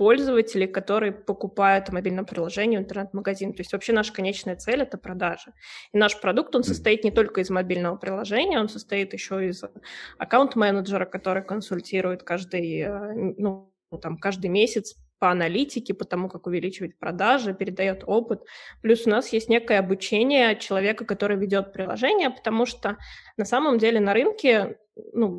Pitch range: 190-225 Hz